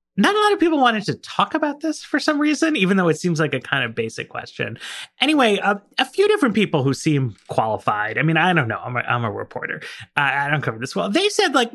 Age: 30-49